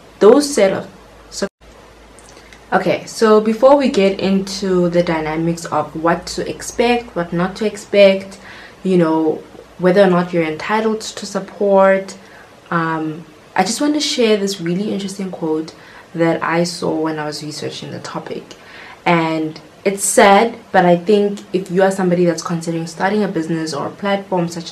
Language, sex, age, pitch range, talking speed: English, female, 20-39, 160-200 Hz, 165 wpm